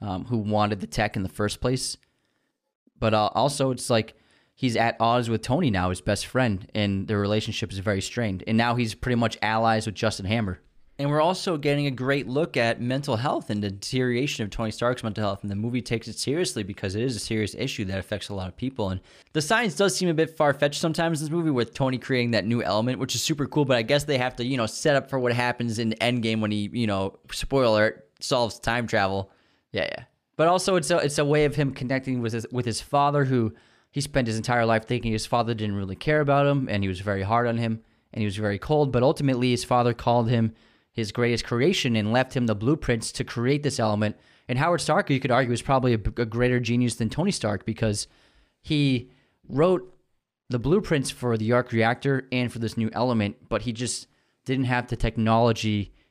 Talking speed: 230 wpm